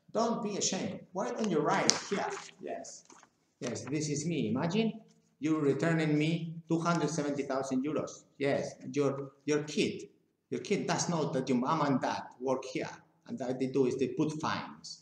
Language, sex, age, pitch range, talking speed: English, male, 50-69, 130-170 Hz, 185 wpm